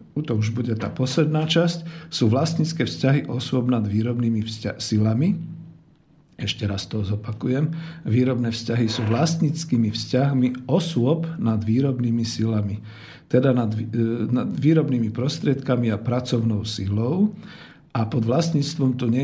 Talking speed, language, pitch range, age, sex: 130 wpm, Slovak, 110-140 Hz, 50-69, male